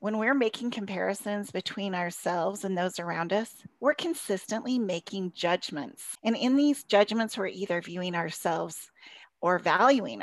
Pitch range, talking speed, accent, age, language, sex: 180-225 Hz, 140 wpm, American, 30-49, English, female